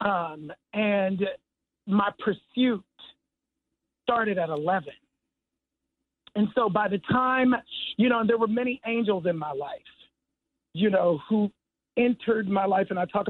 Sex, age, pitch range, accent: male, 50-69, 180-230 Hz, American